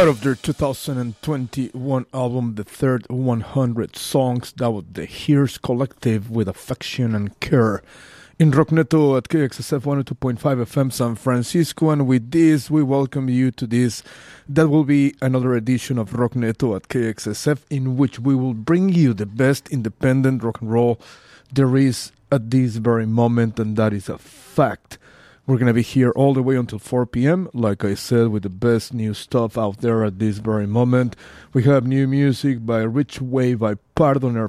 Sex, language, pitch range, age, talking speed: male, English, 115-135 Hz, 30-49, 170 wpm